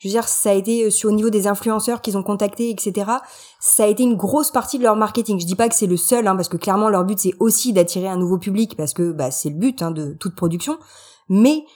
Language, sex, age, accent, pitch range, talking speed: French, female, 20-39, French, 195-260 Hz, 275 wpm